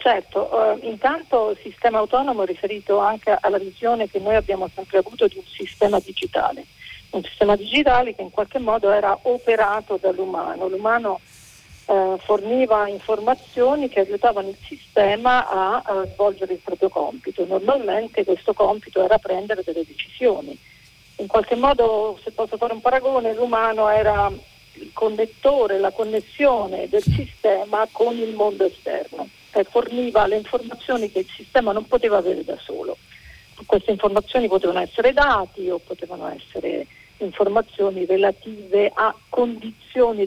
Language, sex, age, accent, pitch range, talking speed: Italian, female, 40-59, native, 195-240 Hz, 145 wpm